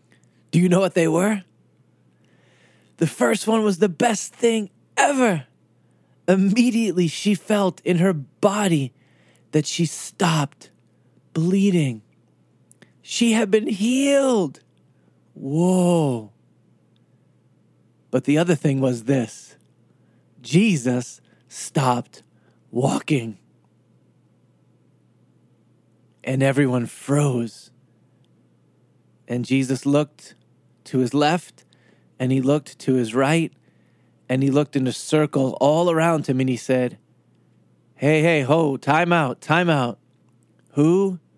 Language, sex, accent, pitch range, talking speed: English, male, American, 130-190 Hz, 105 wpm